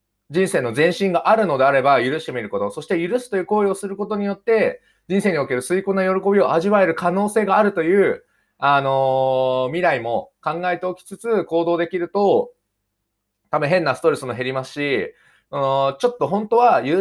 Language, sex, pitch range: Japanese, male, 120-195 Hz